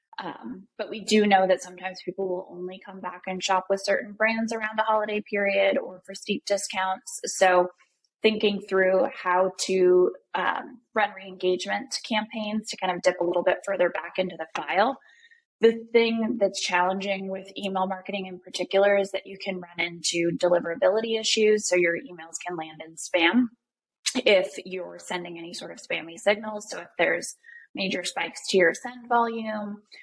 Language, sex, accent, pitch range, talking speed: English, female, American, 180-220 Hz, 175 wpm